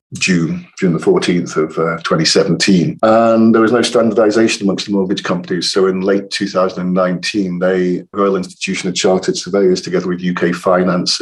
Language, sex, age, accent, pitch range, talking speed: English, male, 50-69, British, 90-105 Hz, 180 wpm